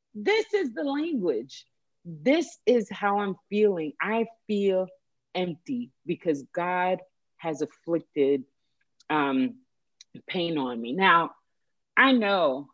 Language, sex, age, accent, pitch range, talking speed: English, female, 30-49, American, 155-225 Hz, 110 wpm